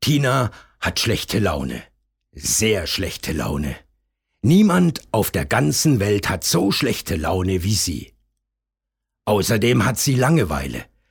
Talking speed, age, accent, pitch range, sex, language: 120 wpm, 60-79, German, 85-125 Hz, male, German